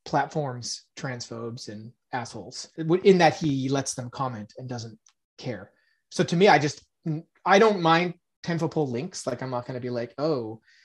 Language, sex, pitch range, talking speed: English, male, 130-170 Hz, 170 wpm